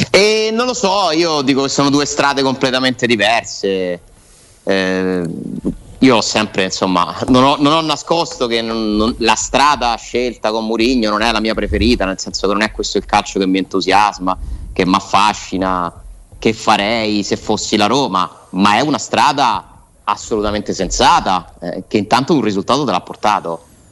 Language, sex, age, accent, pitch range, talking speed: Italian, male, 30-49, native, 100-150 Hz, 165 wpm